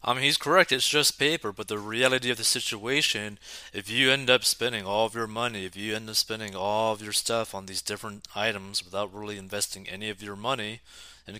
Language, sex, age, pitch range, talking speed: English, male, 20-39, 95-115 Hz, 225 wpm